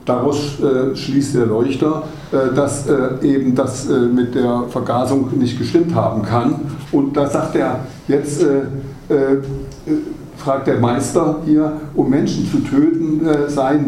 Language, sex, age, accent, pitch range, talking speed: German, male, 60-79, German, 125-145 Hz, 150 wpm